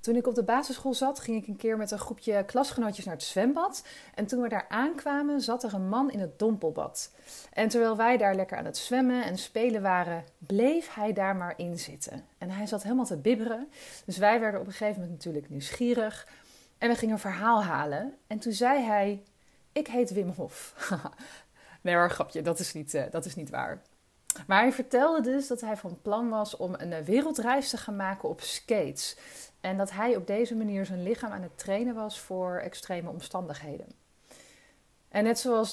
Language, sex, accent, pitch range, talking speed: Dutch, female, Dutch, 190-245 Hz, 205 wpm